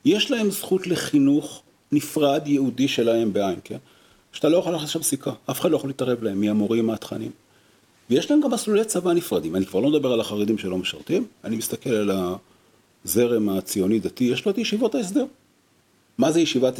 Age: 40-59